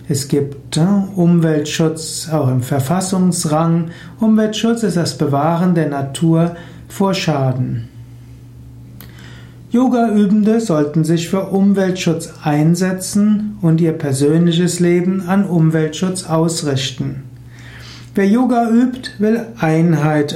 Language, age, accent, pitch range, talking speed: German, 60-79, German, 145-180 Hz, 95 wpm